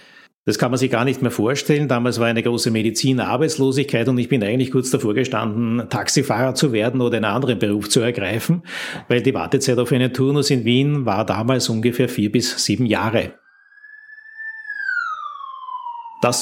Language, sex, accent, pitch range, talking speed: German, male, Austrian, 115-145 Hz, 170 wpm